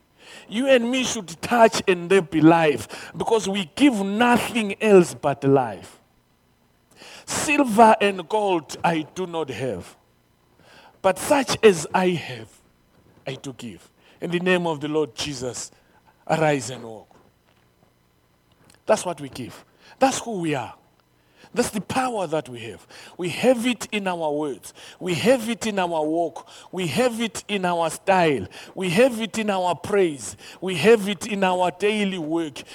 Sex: male